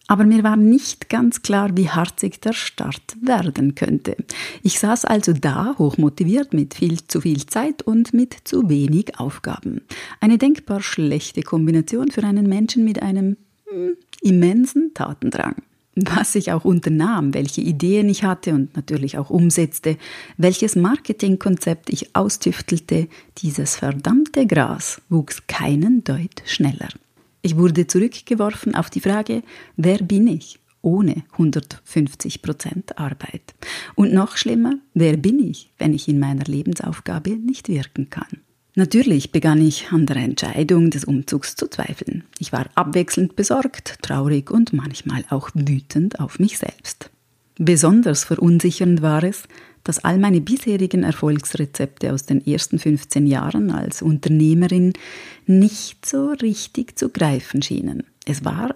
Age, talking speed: 30-49, 135 wpm